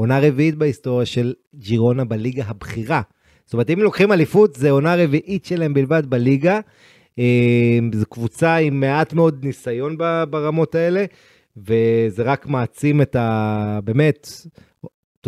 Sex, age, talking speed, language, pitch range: male, 30-49, 130 wpm, Hebrew, 130-160 Hz